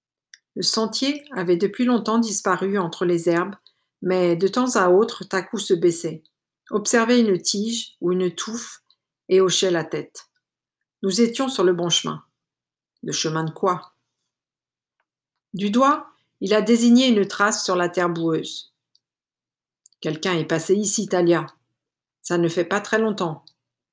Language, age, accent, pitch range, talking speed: French, 50-69, French, 170-215 Hz, 150 wpm